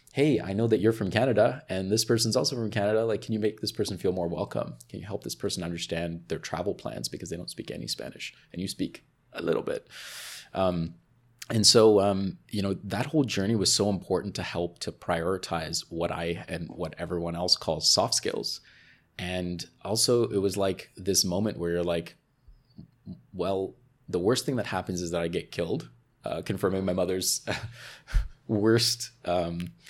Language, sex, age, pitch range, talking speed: English, male, 30-49, 90-115 Hz, 190 wpm